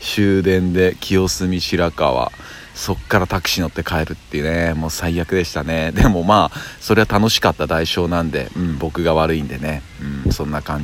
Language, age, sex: Japanese, 40-59, male